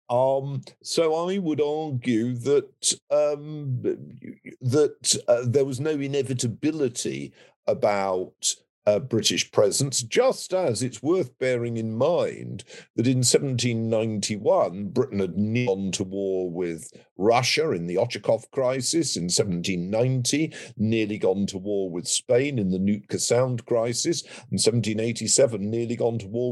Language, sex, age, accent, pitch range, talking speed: English, male, 50-69, British, 105-135 Hz, 130 wpm